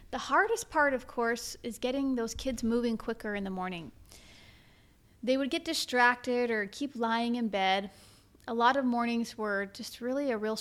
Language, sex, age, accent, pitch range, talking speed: English, female, 30-49, American, 205-245 Hz, 180 wpm